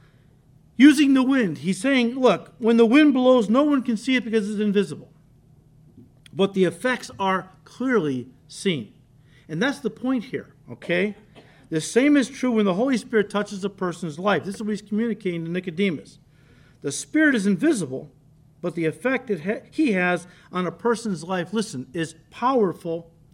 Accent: American